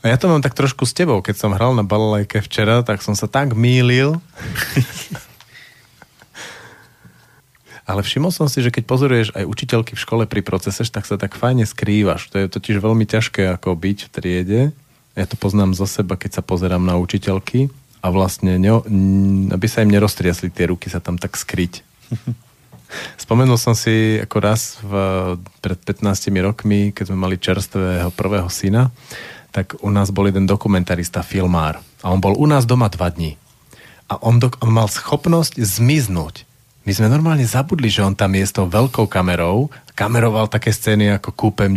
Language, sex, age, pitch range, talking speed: Slovak, male, 40-59, 95-120 Hz, 175 wpm